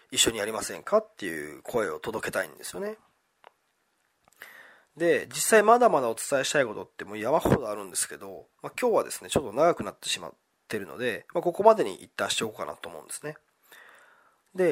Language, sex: Japanese, male